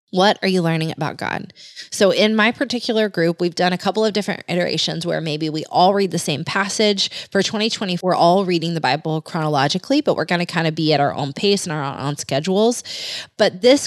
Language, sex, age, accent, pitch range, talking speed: English, female, 20-39, American, 165-210 Hz, 220 wpm